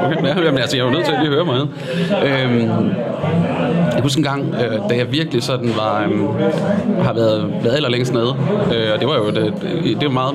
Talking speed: 220 wpm